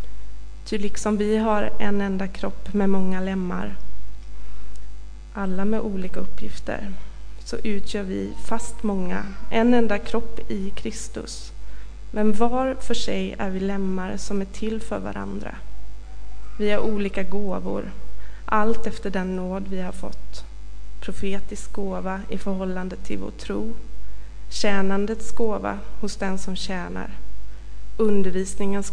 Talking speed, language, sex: 125 wpm, Swedish, female